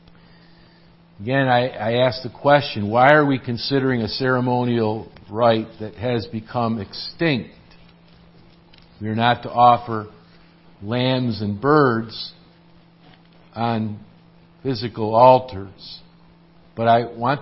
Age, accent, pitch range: 50-69, American, 110-140 Hz